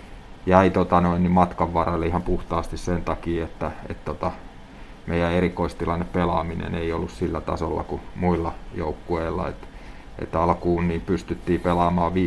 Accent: native